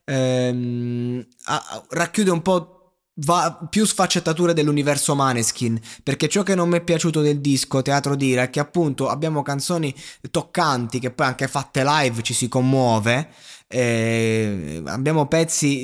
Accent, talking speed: native, 140 wpm